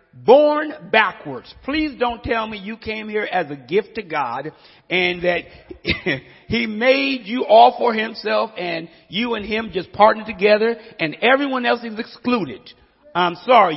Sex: male